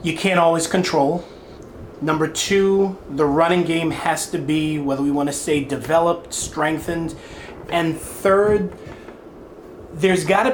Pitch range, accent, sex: 150-190 Hz, American, male